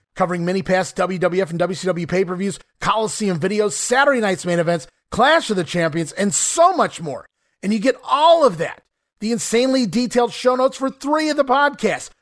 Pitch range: 175-245 Hz